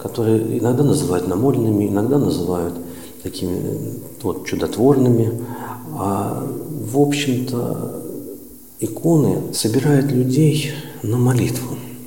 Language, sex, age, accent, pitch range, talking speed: Russian, male, 50-69, native, 105-140 Hz, 85 wpm